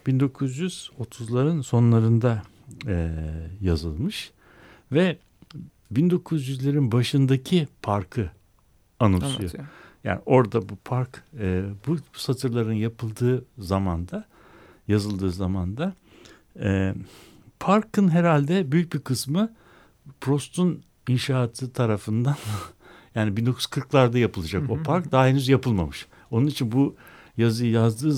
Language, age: Turkish, 60-79